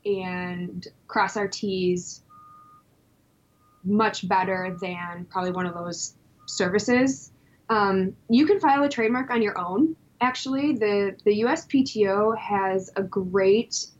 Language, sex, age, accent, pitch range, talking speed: English, female, 20-39, American, 190-225 Hz, 120 wpm